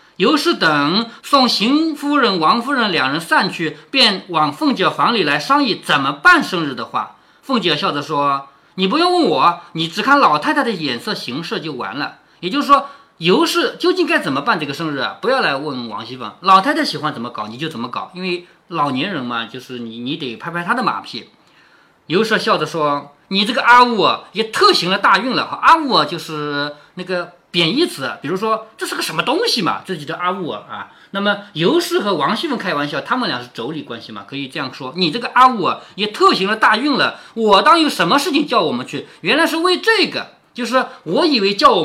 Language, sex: Chinese, male